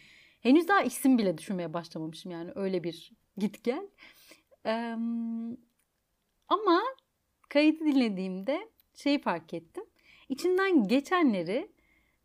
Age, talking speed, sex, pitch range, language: 30-49, 95 wpm, female, 200-305 Hz, Turkish